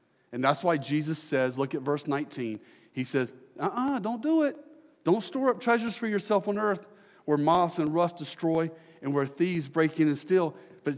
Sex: male